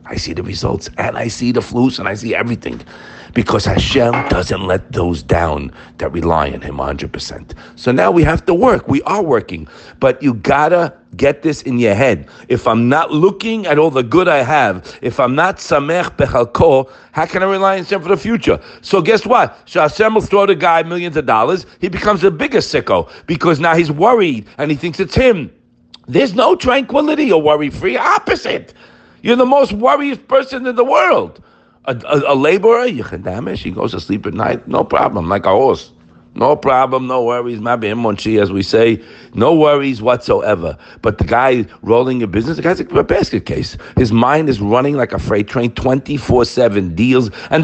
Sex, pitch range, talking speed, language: male, 120-195 Hz, 200 wpm, English